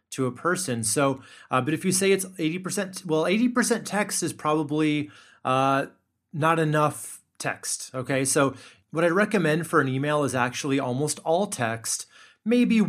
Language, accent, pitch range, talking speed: English, American, 125-165 Hz, 160 wpm